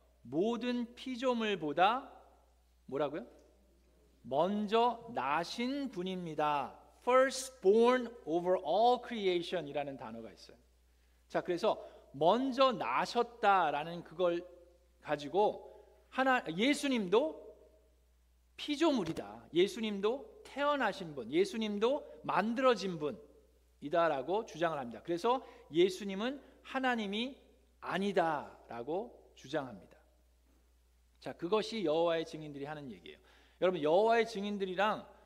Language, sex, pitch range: Korean, male, 160-230 Hz